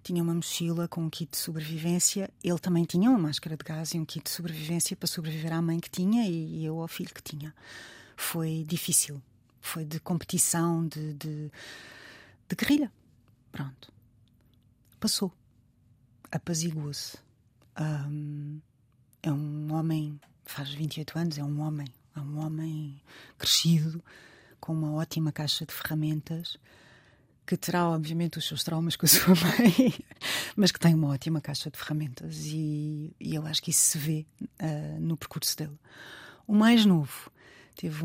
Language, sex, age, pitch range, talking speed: Portuguese, female, 30-49, 145-175 Hz, 150 wpm